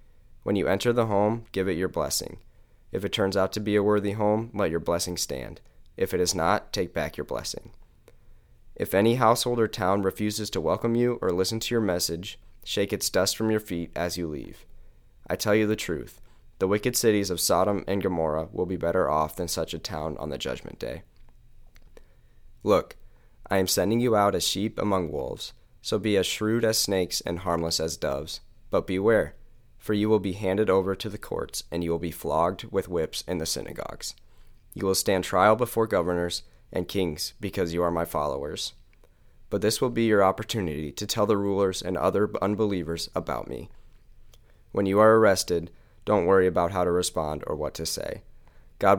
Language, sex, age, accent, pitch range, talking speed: English, male, 20-39, American, 85-105 Hz, 195 wpm